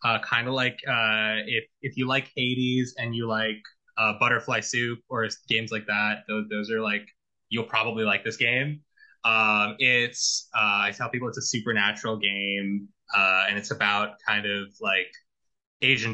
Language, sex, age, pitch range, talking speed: English, male, 20-39, 105-130 Hz, 175 wpm